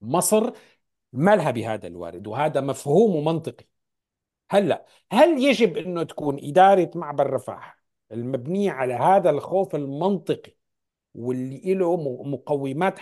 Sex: male